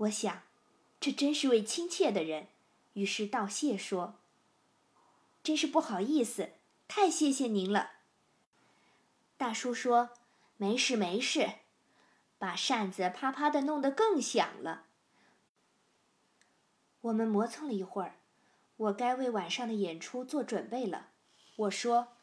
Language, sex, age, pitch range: Chinese, female, 20-39, 200-255 Hz